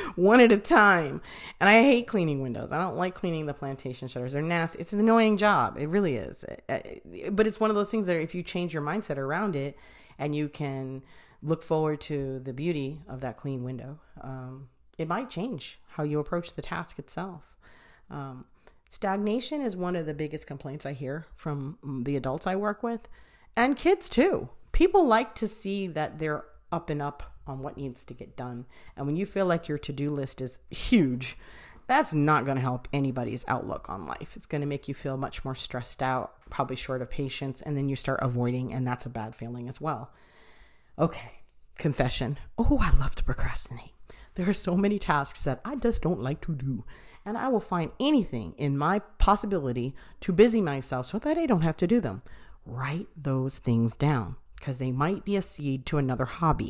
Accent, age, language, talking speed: American, 40-59, English, 200 wpm